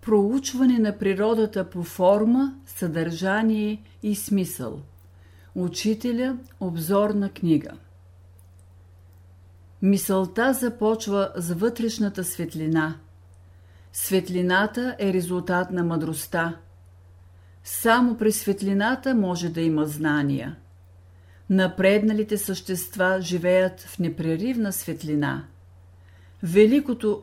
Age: 50-69